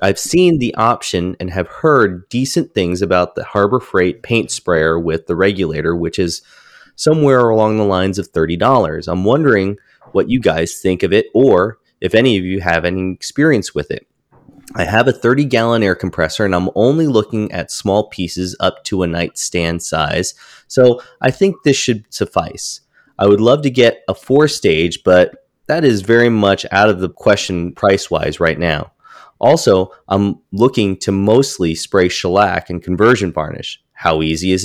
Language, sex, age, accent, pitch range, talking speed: English, male, 30-49, American, 90-115 Hz, 175 wpm